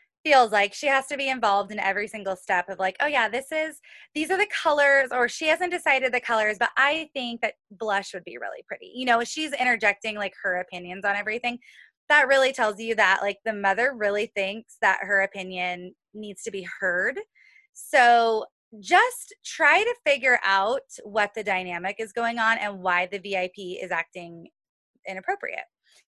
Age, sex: 20-39, female